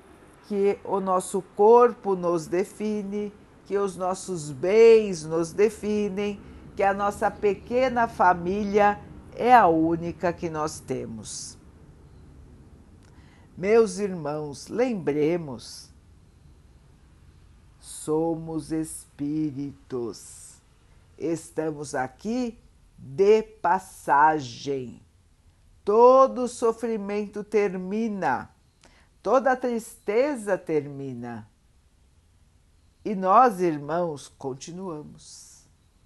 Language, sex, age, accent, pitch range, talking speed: Portuguese, female, 50-69, Brazilian, 135-205 Hz, 70 wpm